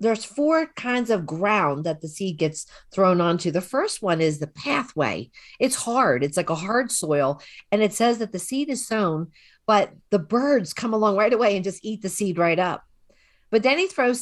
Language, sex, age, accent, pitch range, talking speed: English, female, 50-69, American, 155-225 Hz, 210 wpm